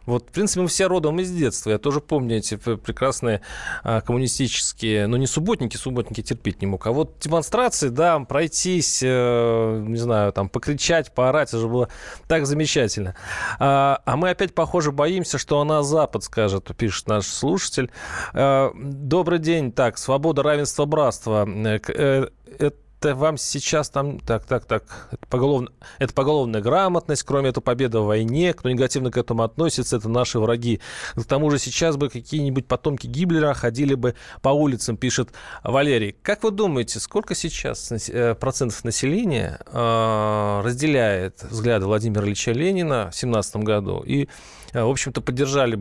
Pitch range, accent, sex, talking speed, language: 115-145 Hz, native, male, 145 wpm, Russian